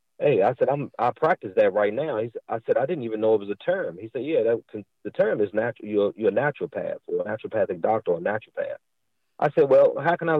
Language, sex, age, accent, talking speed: English, male, 40-59, American, 265 wpm